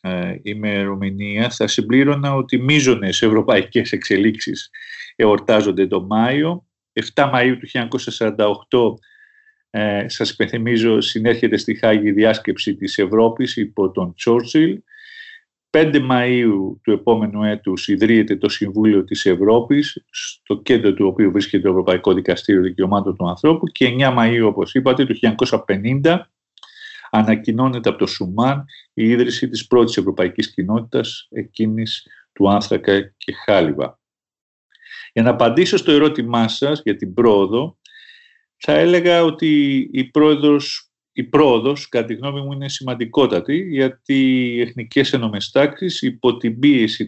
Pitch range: 110-150 Hz